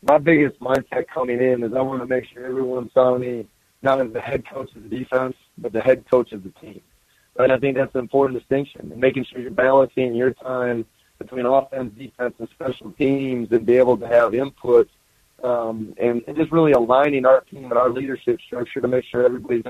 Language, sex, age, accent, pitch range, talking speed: English, male, 30-49, American, 120-135 Hz, 215 wpm